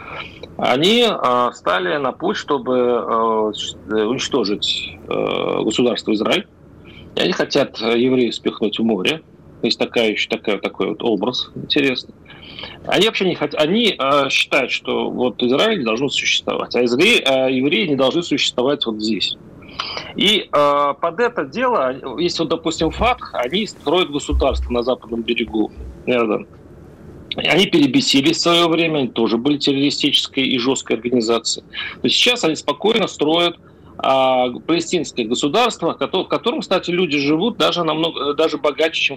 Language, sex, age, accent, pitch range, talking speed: Russian, male, 40-59, native, 120-170 Hz, 140 wpm